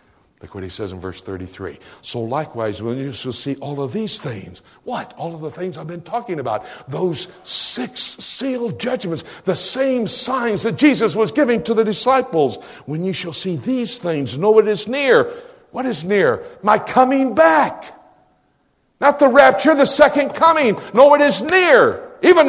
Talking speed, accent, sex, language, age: 180 wpm, American, male, English, 60-79